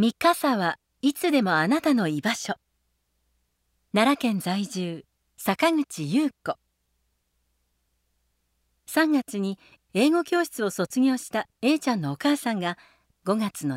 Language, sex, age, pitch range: Japanese, female, 40-59, 160-260 Hz